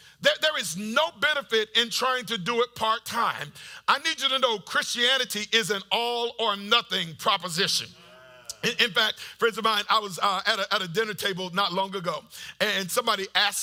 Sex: male